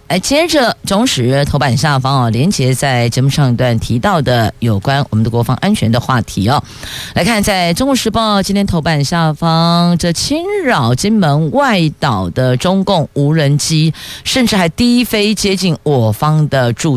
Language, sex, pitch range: Chinese, female, 135-210 Hz